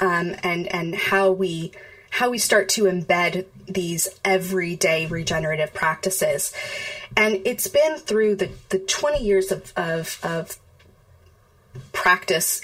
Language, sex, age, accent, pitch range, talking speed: English, female, 30-49, American, 170-200 Hz, 125 wpm